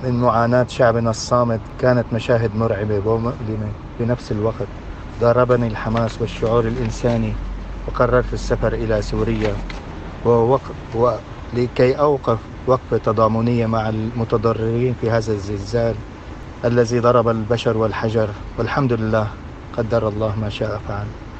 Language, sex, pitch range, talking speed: Arabic, male, 110-125 Hz, 115 wpm